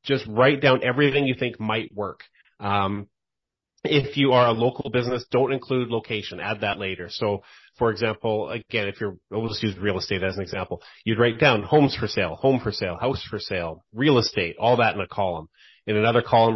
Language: English